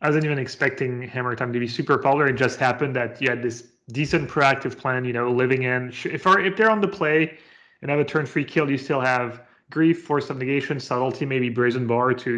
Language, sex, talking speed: English, male, 235 wpm